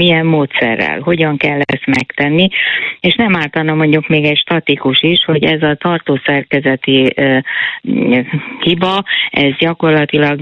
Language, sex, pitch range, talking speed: Hungarian, female, 130-155 Hz, 125 wpm